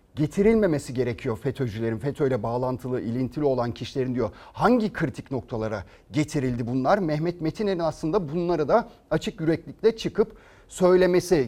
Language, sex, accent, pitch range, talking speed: Turkish, male, native, 125-200 Hz, 120 wpm